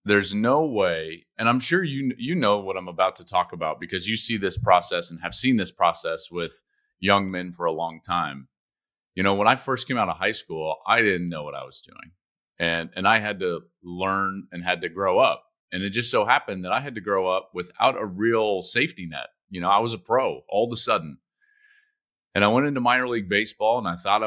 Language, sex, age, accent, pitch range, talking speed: English, male, 30-49, American, 95-130 Hz, 235 wpm